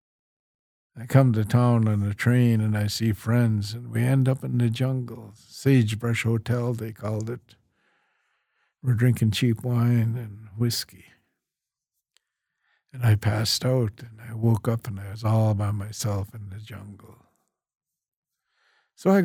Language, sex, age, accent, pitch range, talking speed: English, male, 60-79, American, 105-125 Hz, 150 wpm